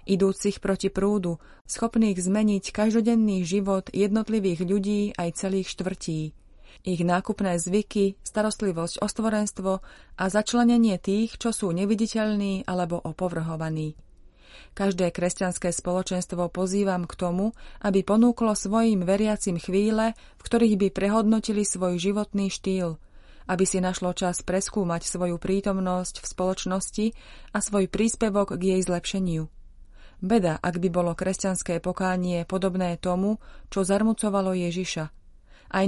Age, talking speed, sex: 30-49, 120 wpm, female